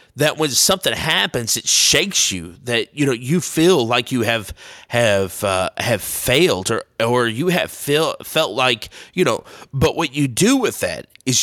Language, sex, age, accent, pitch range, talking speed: English, male, 30-49, American, 100-135 Hz, 185 wpm